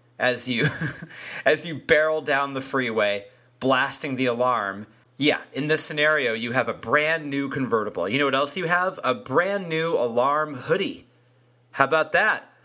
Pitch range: 120-150 Hz